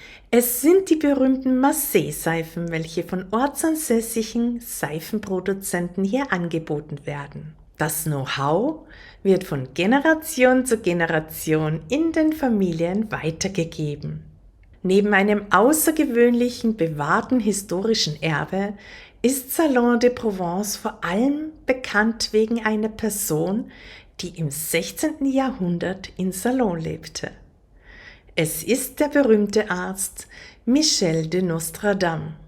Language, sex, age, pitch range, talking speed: German, female, 50-69, 165-240 Hz, 100 wpm